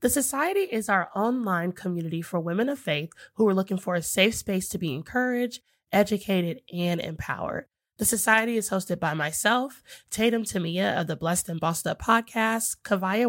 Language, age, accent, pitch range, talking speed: English, 20-39, American, 180-230 Hz, 175 wpm